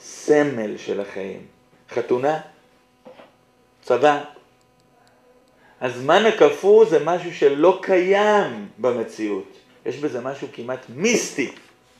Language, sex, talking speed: Hebrew, male, 85 wpm